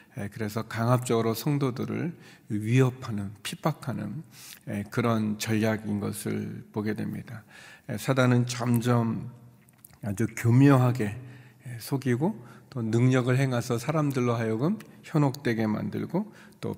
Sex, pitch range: male, 110-130 Hz